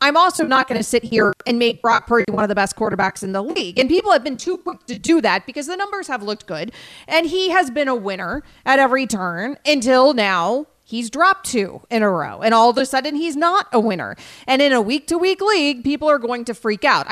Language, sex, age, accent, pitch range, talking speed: English, female, 30-49, American, 225-295 Hz, 255 wpm